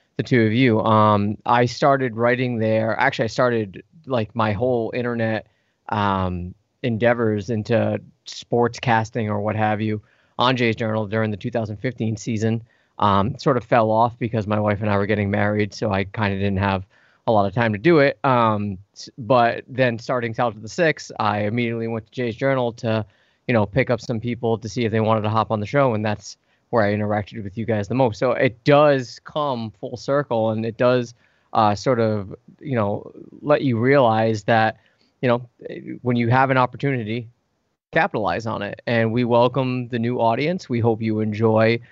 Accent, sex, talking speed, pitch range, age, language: American, male, 195 wpm, 110-125 Hz, 20-39, English